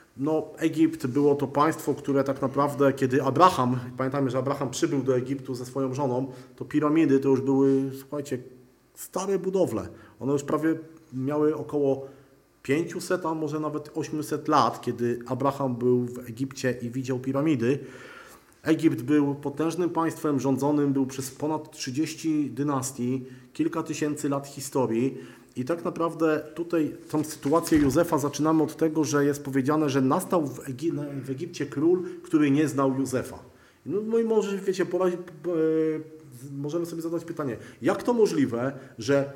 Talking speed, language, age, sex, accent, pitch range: 150 wpm, Polish, 40-59, male, native, 135-160 Hz